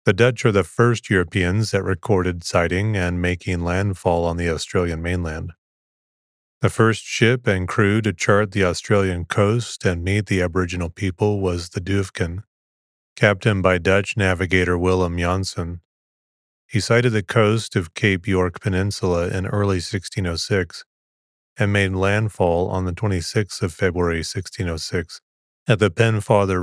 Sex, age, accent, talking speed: male, 30-49, American, 140 wpm